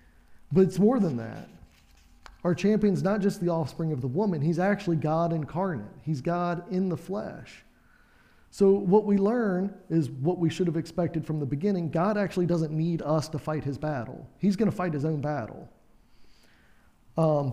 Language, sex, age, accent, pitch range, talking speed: English, male, 40-59, American, 150-190 Hz, 180 wpm